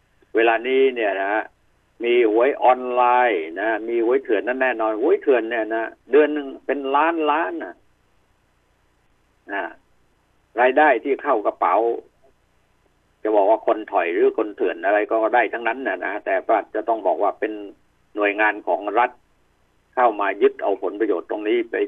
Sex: male